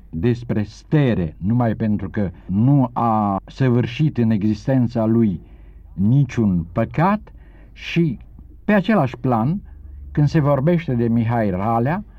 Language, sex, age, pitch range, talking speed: Romanian, male, 60-79, 110-150 Hz, 115 wpm